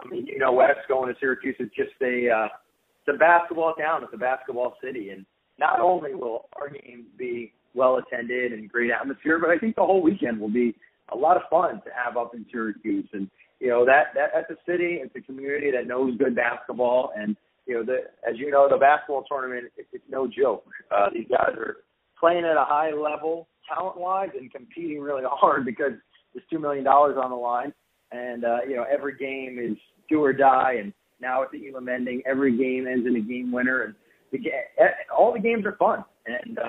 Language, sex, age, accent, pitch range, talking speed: English, male, 30-49, American, 125-155 Hz, 210 wpm